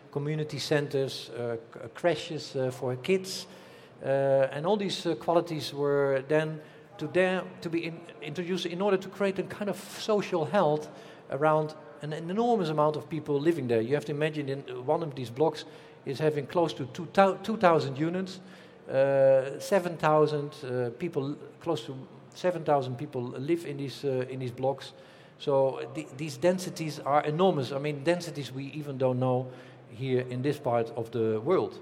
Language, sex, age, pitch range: English, male, 50-69, 130-170 Hz